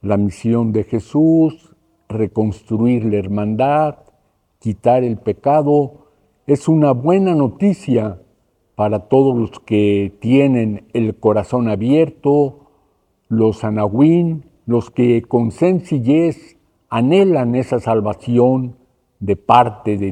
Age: 50-69